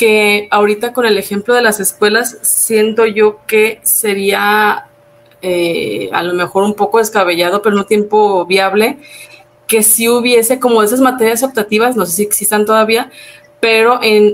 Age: 30-49